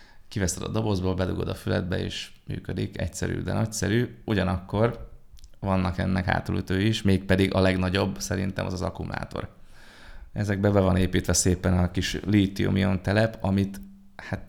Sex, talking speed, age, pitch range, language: male, 145 wpm, 30-49, 90-100 Hz, Hungarian